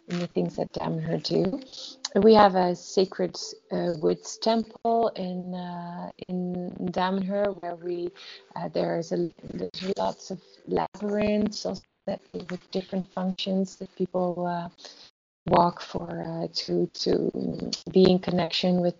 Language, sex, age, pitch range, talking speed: English, female, 30-49, 170-190 Hz, 135 wpm